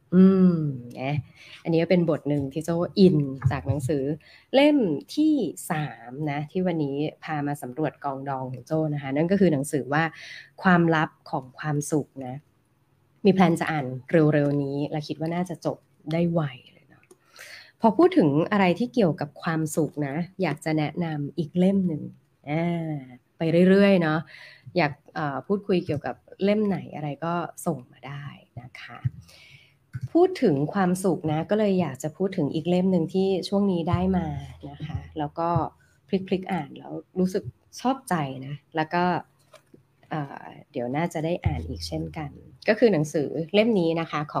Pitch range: 140-180 Hz